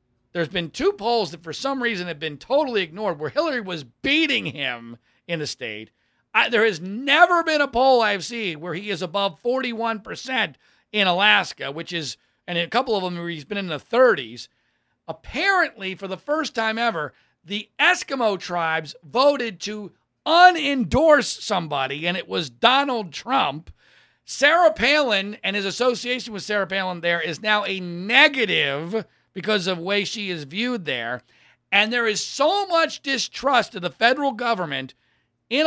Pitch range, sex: 170-255 Hz, male